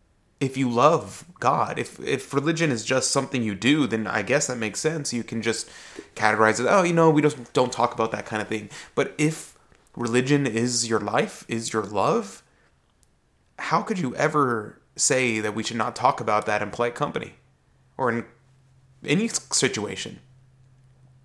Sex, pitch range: male, 110-125 Hz